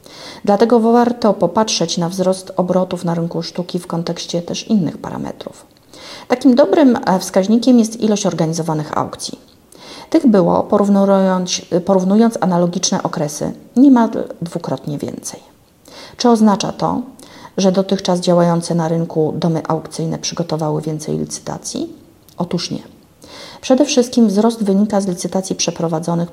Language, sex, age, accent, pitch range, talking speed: Polish, female, 40-59, native, 170-230 Hz, 115 wpm